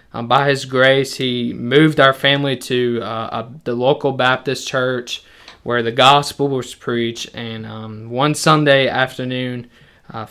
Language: English